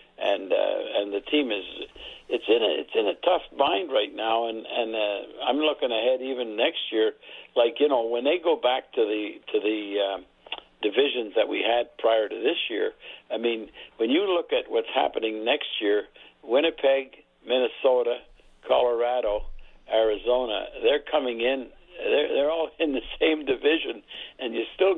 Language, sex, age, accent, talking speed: English, male, 60-79, American, 175 wpm